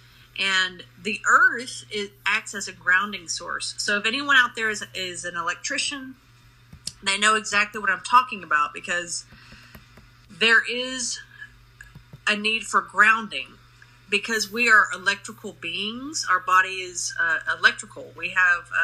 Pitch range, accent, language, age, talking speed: 155-210 Hz, American, English, 30-49, 140 wpm